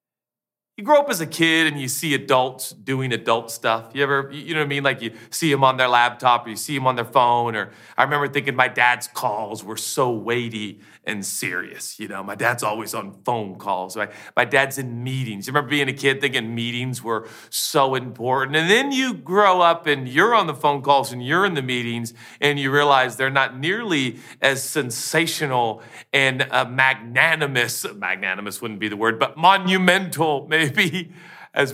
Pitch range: 110-145 Hz